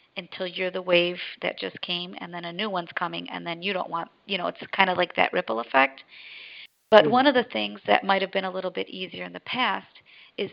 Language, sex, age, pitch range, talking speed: English, female, 40-59, 180-220 Hz, 245 wpm